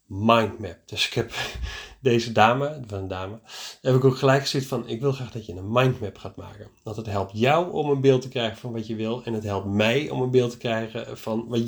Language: Dutch